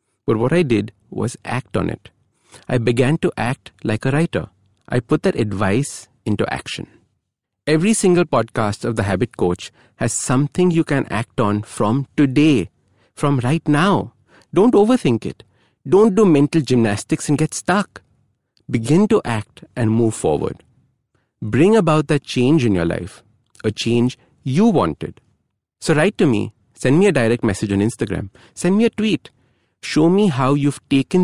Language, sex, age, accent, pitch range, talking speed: English, male, 50-69, Indian, 110-160 Hz, 165 wpm